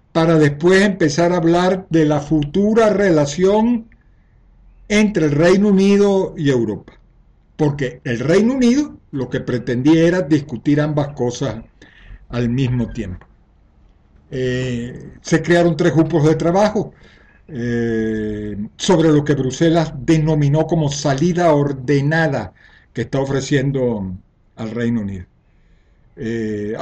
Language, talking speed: Spanish, 115 wpm